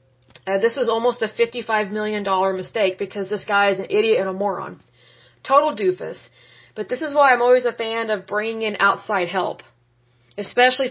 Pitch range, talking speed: 195-250 Hz, 180 wpm